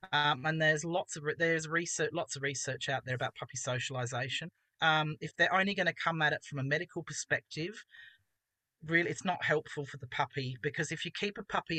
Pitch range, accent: 145-170 Hz, Australian